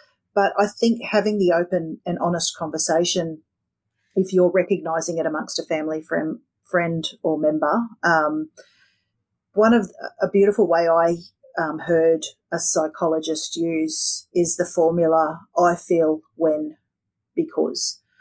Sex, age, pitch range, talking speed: female, 40-59, 160-190 Hz, 125 wpm